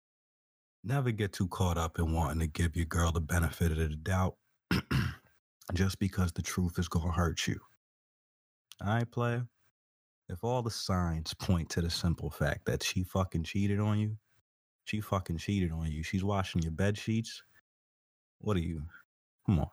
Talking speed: 175 wpm